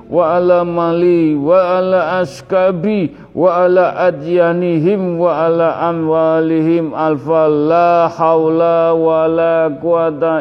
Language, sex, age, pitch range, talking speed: Indonesian, male, 50-69, 145-175 Hz, 105 wpm